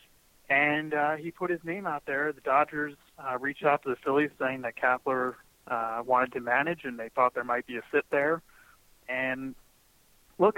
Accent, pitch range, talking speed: American, 120-140 Hz, 185 wpm